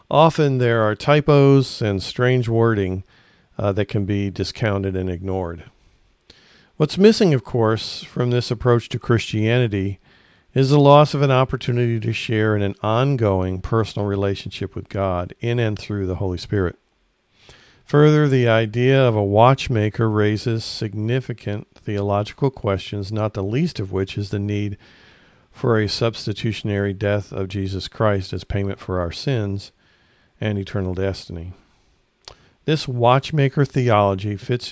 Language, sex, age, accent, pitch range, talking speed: English, male, 50-69, American, 100-125 Hz, 140 wpm